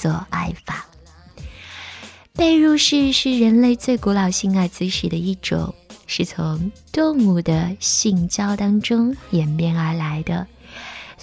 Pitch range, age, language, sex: 175-230 Hz, 20-39, Chinese, female